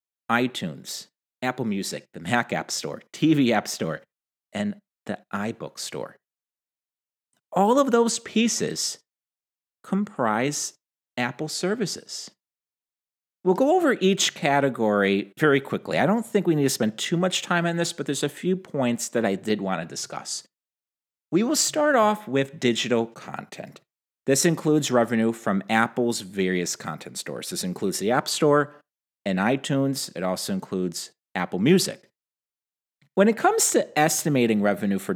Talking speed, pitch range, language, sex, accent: 145 wpm, 115-185 Hz, English, male, American